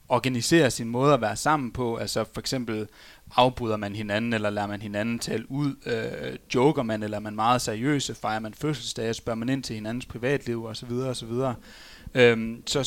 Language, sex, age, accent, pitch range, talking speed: Danish, male, 30-49, native, 120-160 Hz, 175 wpm